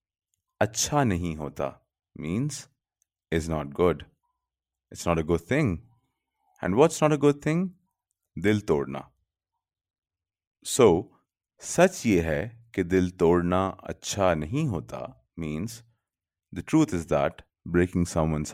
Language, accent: English, Indian